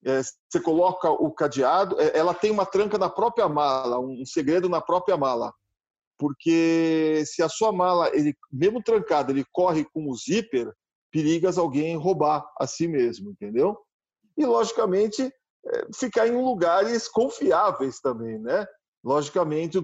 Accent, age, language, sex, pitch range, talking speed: Brazilian, 40-59, Portuguese, male, 145-205 Hz, 150 wpm